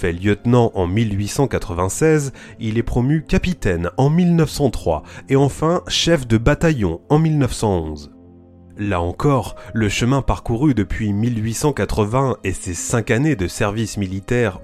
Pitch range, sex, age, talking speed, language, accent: 95-130 Hz, male, 30-49, 125 wpm, French, French